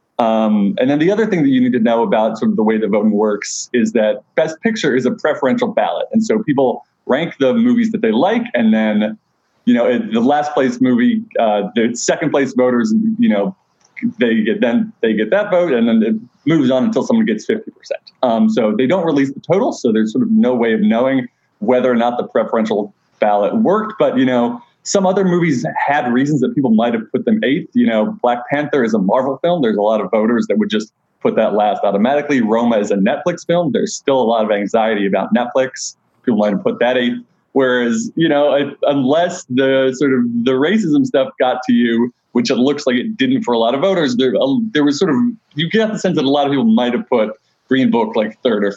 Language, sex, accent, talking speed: English, male, American, 230 wpm